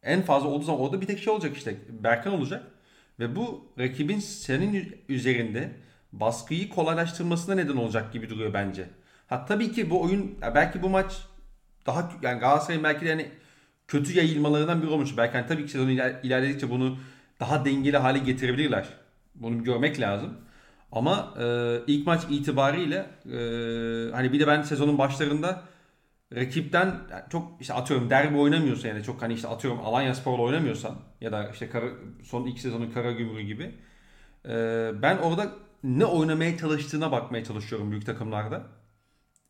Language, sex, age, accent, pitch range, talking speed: Turkish, male, 40-59, native, 115-155 Hz, 150 wpm